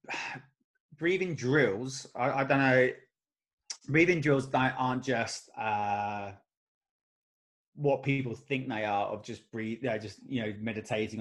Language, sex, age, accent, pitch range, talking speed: English, male, 20-39, British, 115-135 Hz, 130 wpm